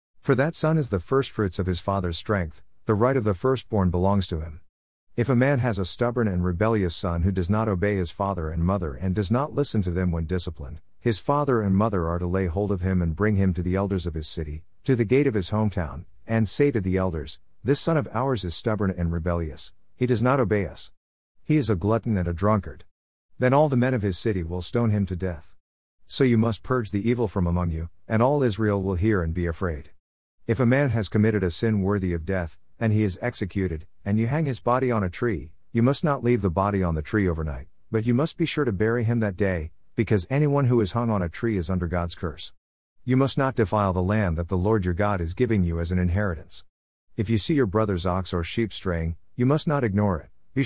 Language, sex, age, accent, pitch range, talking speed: English, male, 50-69, American, 90-115 Hz, 245 wpm